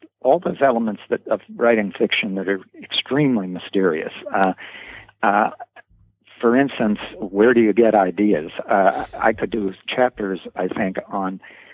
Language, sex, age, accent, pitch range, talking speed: English, male, 60-79, American, 100-115 Hz, 145 wpm